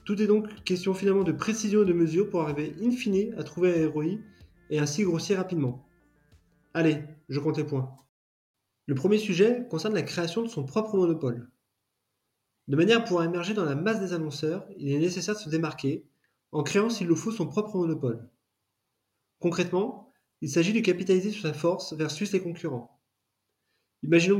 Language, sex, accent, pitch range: French, male, French, 145-195 Hz